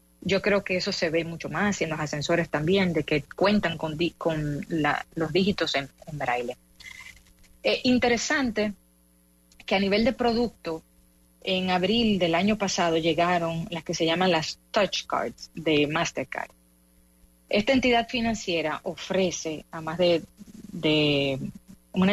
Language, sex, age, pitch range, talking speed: English, female, 30-49, 155-190 Hz, 150 wpm